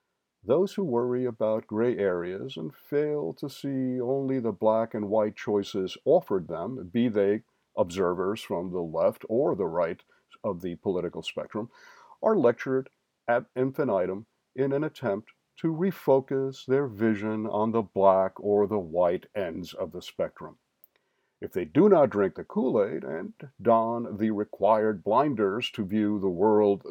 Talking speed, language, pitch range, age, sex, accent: 150 wpm, English, 110-155 Hz, 50-69, male, American